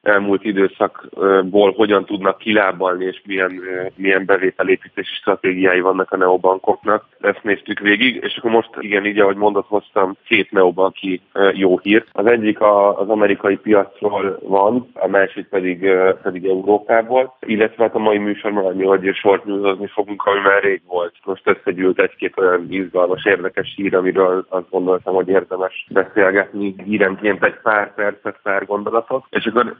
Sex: male